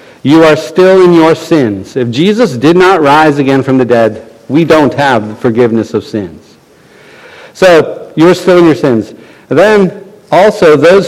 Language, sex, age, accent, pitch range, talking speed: English, male, 50-69, American, 125-205 Hz, 175 wpm